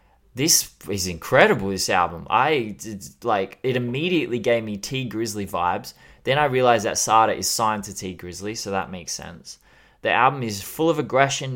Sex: male